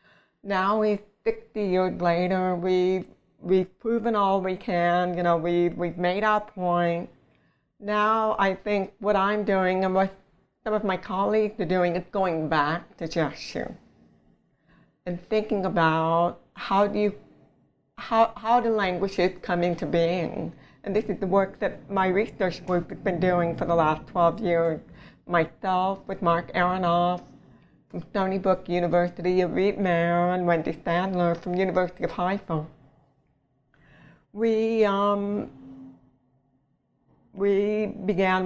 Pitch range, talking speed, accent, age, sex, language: 175-200 Hz, 140 wpm, American, 60-79, female, English